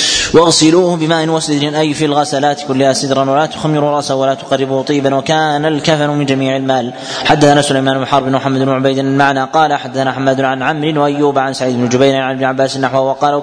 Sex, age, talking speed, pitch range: male, 20-39, 185 wpm, 135-150 Hz